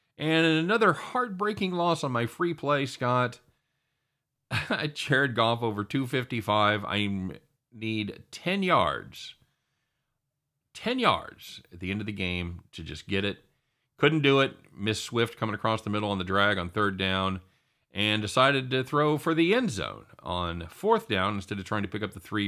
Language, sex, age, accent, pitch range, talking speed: English, male, 40-59, American, 90-125 Hz, 170 wpm